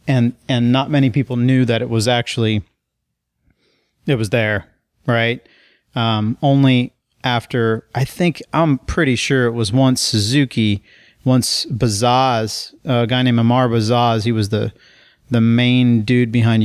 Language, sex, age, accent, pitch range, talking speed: English, male, 40-59, American, 115-130 Hz, 145 wpm